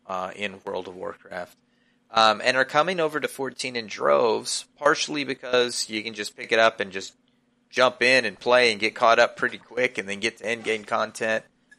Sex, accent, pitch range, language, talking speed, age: male, American, 100-130 Hz, English, 215 wpm, 30-49